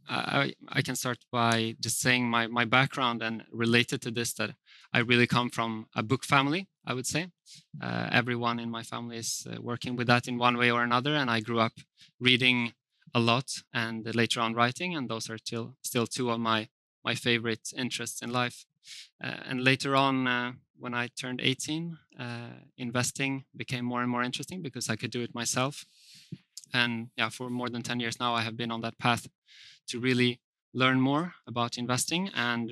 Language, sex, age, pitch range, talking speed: English, male, 20-39, 120-130 Hz, 200 wpm